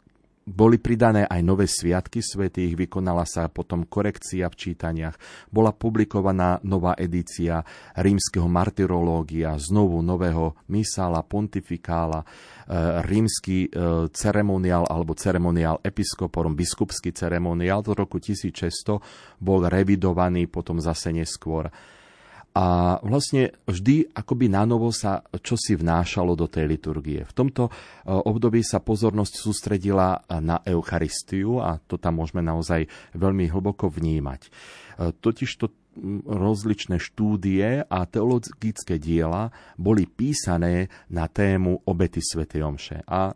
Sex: male